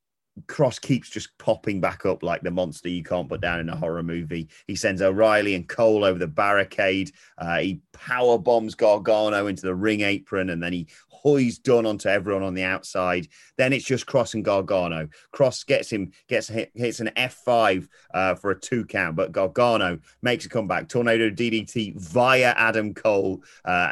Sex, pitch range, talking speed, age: male, 95-120 Hz, 185 wpm, 30-49